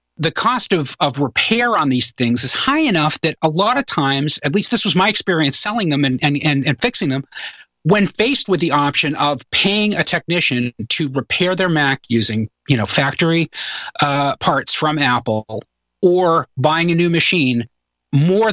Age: 30-49